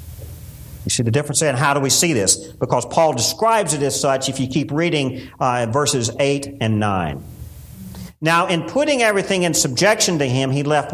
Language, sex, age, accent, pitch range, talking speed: English, male, 50-69, American, 135-210 Hz, 190 wpm